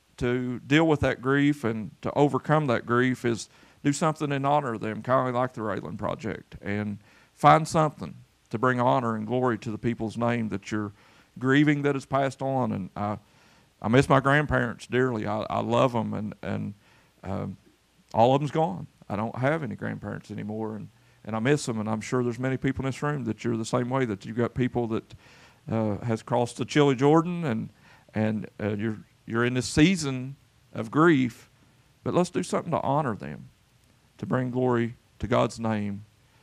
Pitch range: 110-130 Hz